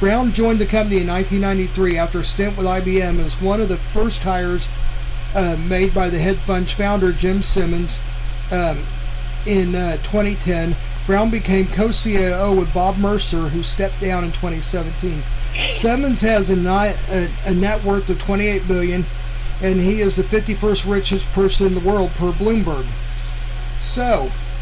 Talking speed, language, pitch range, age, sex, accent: 155 wpm, English, 135-200 Hz, 50-69, male, American